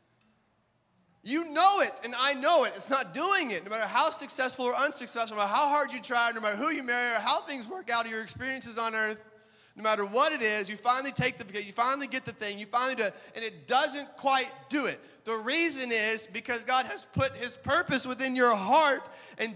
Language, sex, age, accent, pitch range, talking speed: English, male, 30-49, American, 225-290 Hz, 225 wpm